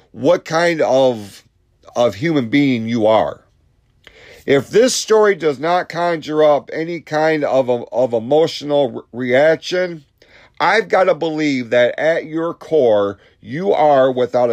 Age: 40-59